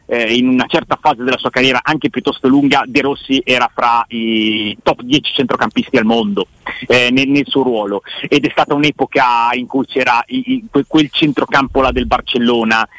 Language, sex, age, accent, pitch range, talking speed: Italian, male, 40-59, native, 120-150 Hz, 190 wpm